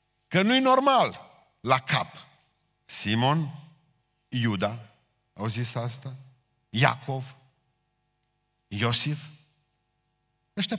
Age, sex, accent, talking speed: 50-69, male, native, 70 wpm